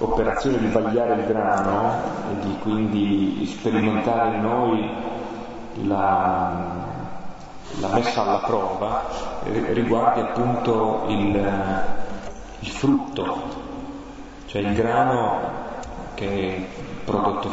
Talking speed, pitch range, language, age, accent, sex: 95 wpm, 100-115 Hz, Italian, 30-49, native, male